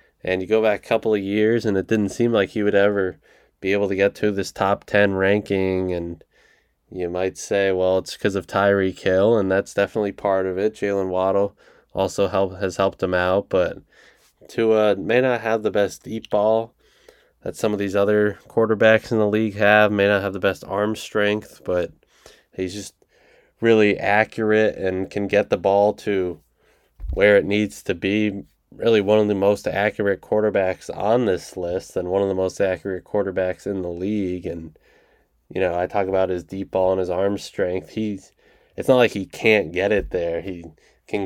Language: English